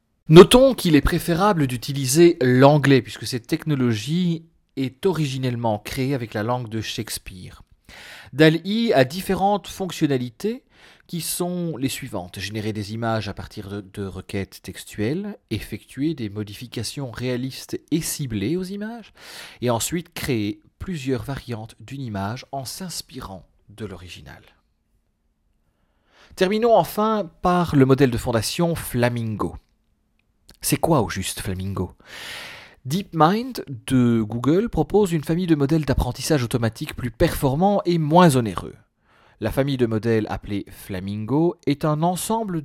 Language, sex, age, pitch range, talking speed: French, male, 40-59, 110-165 Hz, 125 wpm